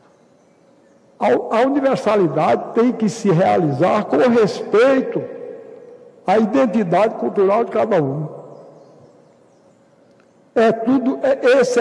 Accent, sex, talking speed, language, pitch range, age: Brazilian, male, 75 wpm, Portuguese, 190-255 Hz, 60-79